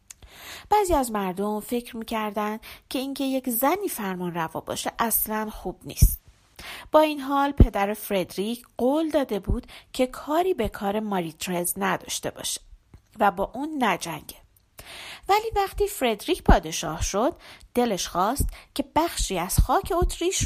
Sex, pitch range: female, 180-285 Hz